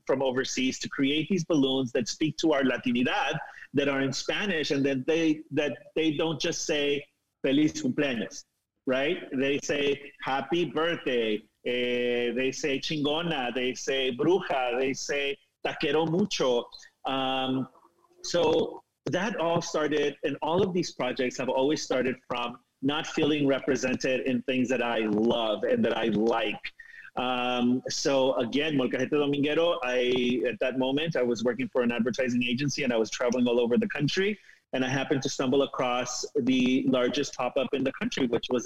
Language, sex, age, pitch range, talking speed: English, male, 40-59, 130-155 Hz, 165 wpm